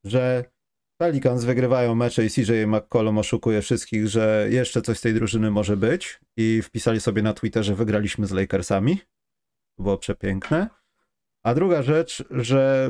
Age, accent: 30-49, native